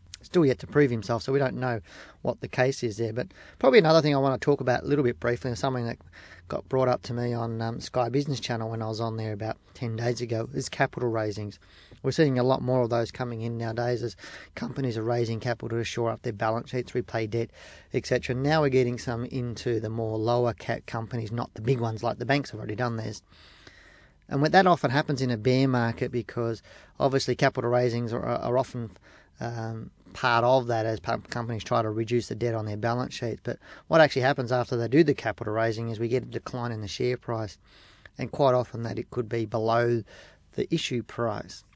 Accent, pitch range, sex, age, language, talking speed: Australian, 115-130 Hz, male, 30-49, English, 225 wpm